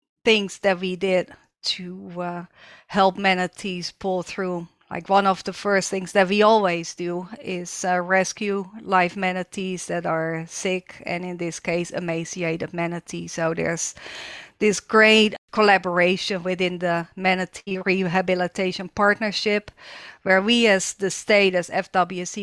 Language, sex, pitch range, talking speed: English, female, 175-200 Hz, 135 wpm